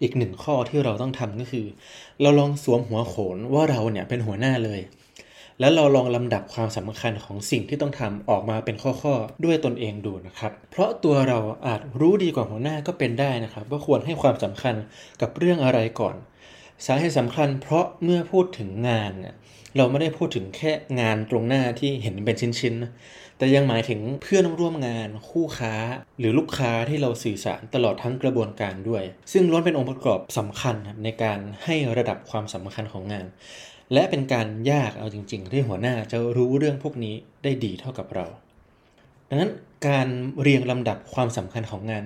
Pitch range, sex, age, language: 110-140 Hz, male, 20-39, Thai